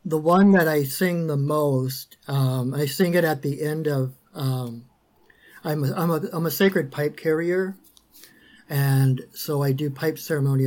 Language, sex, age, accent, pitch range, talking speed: English, male, 50-69, American, 135-165 Hz, 175 wpm